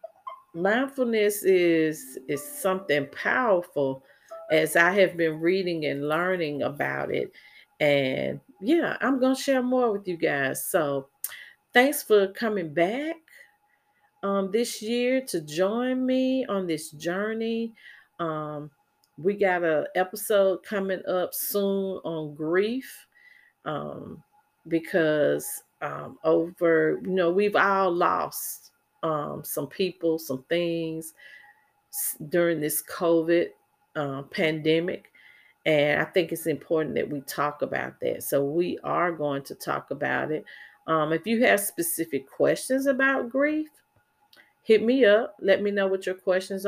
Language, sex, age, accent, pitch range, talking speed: English, female, 40-59, American, 160-230 Hz, 130 wpm